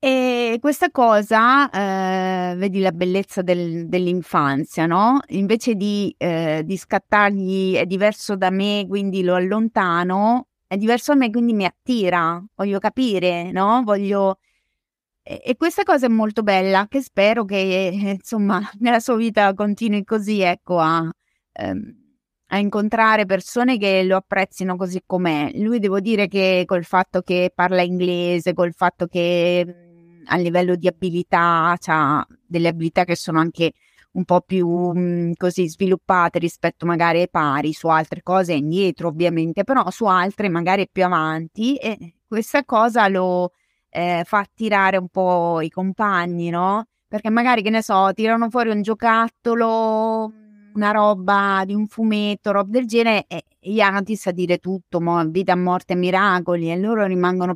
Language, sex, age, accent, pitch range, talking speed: Italian, female, 20-39, native, 175-215 Hz, 150 wpm